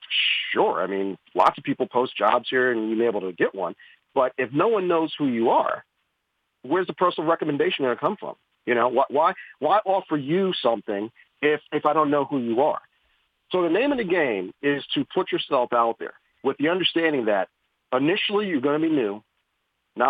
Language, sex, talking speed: English, male, 210 wpm